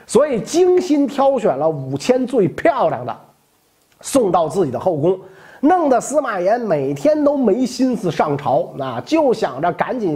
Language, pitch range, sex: Chinese, 175-290 Hz, male